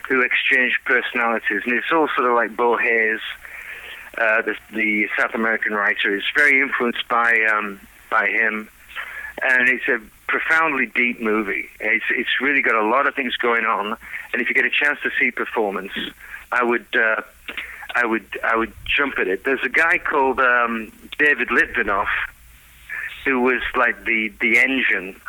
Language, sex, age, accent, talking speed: English, male, 50-69, British, 170 wpm